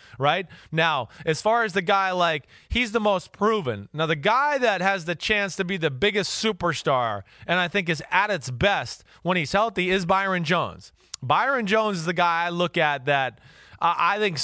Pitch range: 155-195 Hz